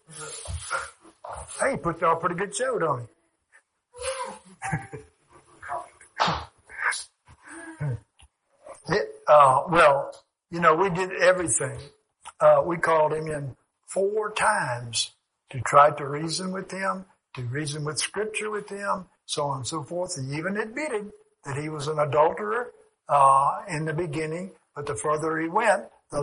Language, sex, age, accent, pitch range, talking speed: English, male, 60-79, American, 140-185 Hz, 135 wpm